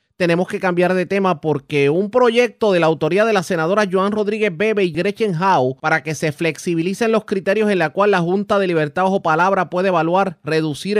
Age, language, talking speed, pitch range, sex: 30-49, Spanish, 205 wpm, 150-210 Hz, male